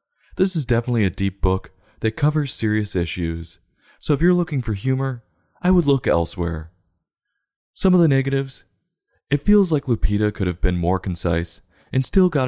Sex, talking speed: male, 175 wpm